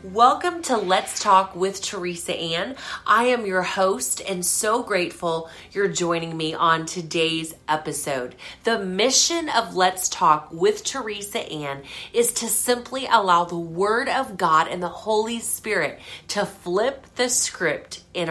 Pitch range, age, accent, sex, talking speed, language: 165-225 Hz, 30-49, American, female, 145 wpm, English